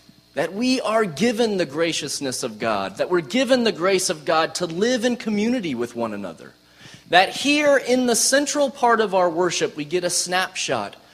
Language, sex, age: English, male, 30-49